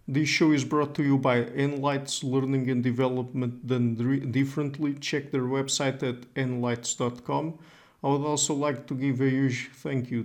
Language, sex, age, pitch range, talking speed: English, male, 50-69, 125-140 Hz, 165 wpm